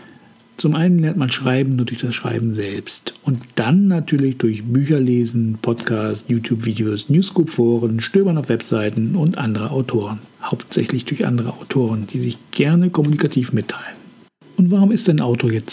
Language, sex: German, male